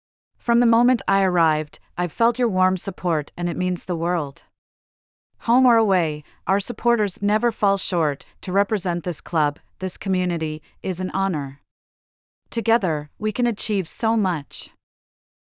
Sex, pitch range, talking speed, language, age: female, 165-205 Hz, 145 wpm, English, 40-59